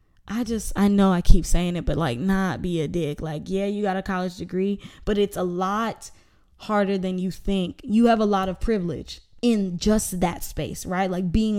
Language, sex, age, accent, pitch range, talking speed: English, female, 10-29, American, 180-220 Hz, 225 wpm